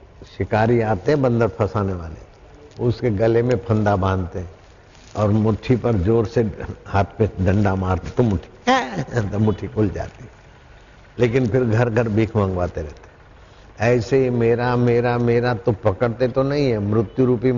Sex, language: male, Hindi